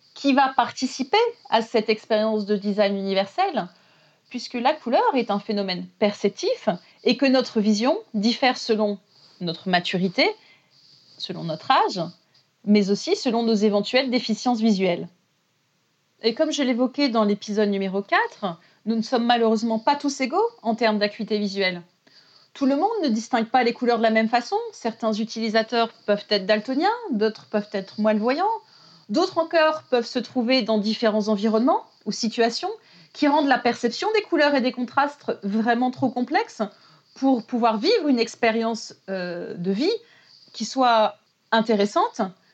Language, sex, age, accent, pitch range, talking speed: French, female, 30-49, French, 205-260 Hz, 150 wpm